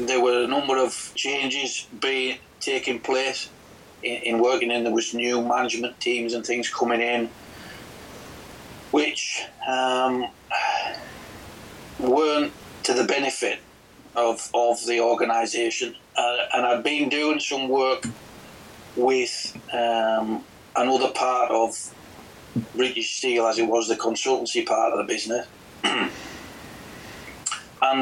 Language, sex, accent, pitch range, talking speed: English, male, British, 115-130 Hz, 120 wpm